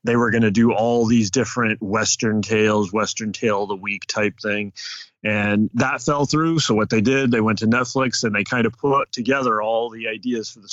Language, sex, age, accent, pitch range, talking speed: English, male, 30-49, American, 110-130 Hz, 225 wpm